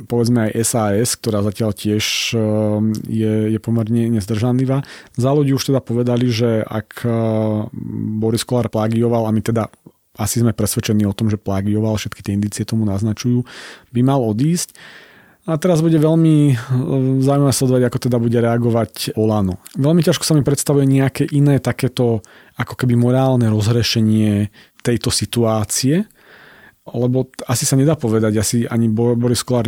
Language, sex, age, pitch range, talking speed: Slovak, male, 30-49, 105-125 Hz, 140 wpm